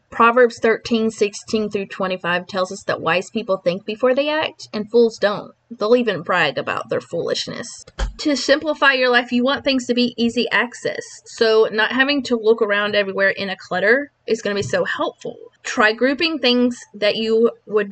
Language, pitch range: English, 200-255 Hz